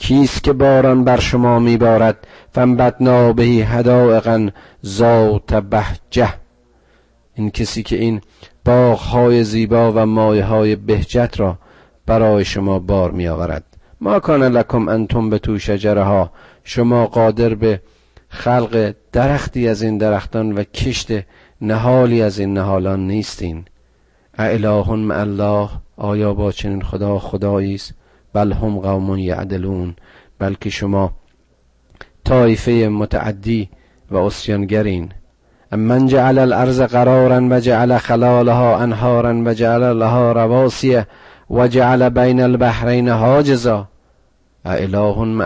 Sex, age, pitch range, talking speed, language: male, 40-59, 95-115 Hz, 110 wpm, Persian